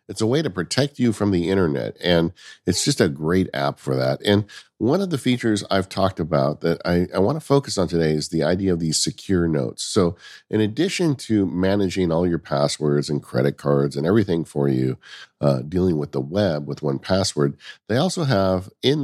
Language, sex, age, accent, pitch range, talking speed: English, male, 50-69, American, 75-95 Hz, 205 wpm